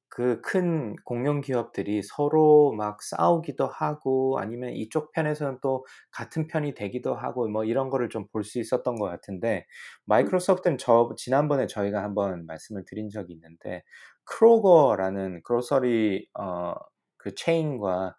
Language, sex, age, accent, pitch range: Korean, male, 20-39, native, 95-130 Hz